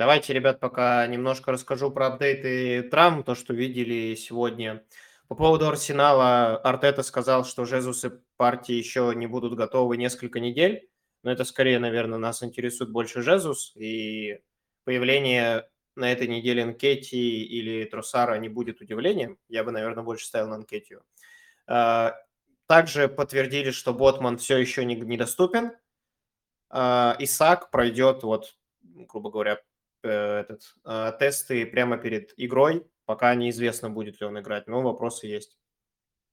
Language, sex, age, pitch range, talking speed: Russian, male, 20-39, 115-135 Hz, 130 wpm